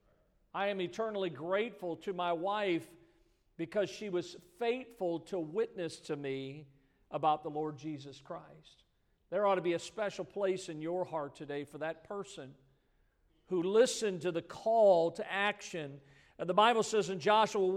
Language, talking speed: English, 160 wpm